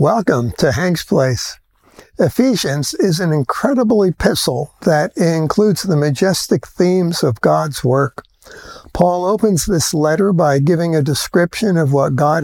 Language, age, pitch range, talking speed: English, 60-79, 150-195 Hz, 135 wpm